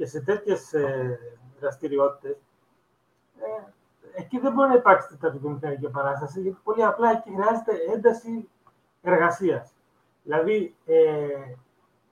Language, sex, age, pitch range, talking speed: Greek, male, 30-49, 150-200 Hz, 105 wpm